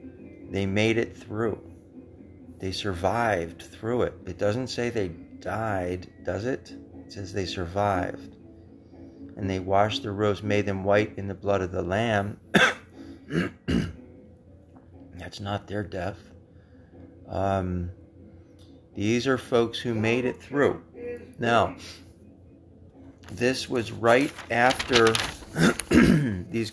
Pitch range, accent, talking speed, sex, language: 90-115 Hz, American, 115 wpm, male, English